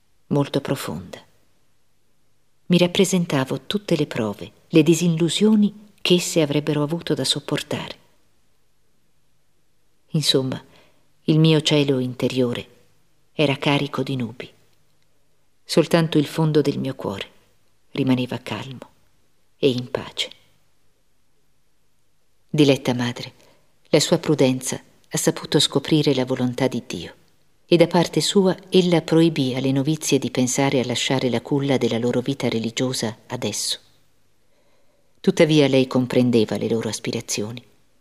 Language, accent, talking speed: Italian, native, 115 wpm